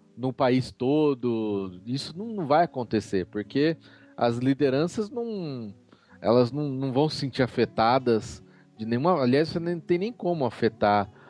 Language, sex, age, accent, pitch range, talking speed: Portuguese, male, 40-59, Brazilian, 115-165 Hz, 140 wpm